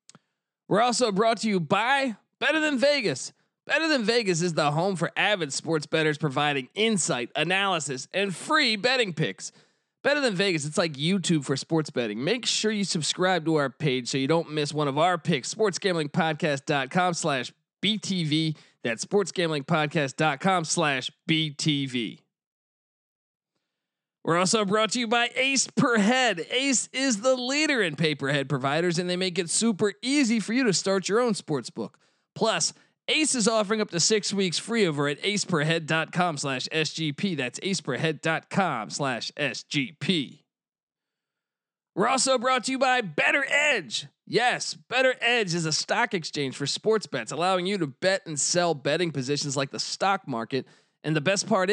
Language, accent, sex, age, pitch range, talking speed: English, American, male, 20-39, 155-220 Hz, 160 wpm